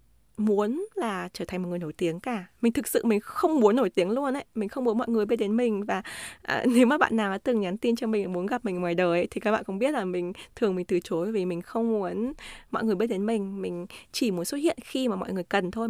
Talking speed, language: 285 wpm, Vietnamese